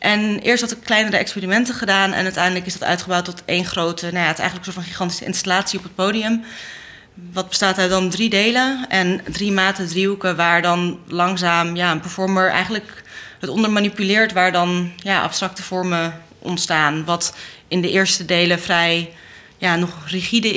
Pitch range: 170-190 Hz